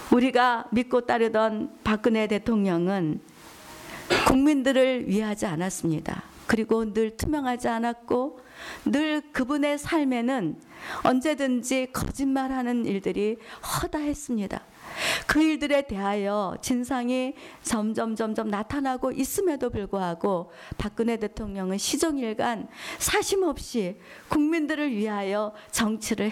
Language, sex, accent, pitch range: Korean, female, native, 215-285 Hz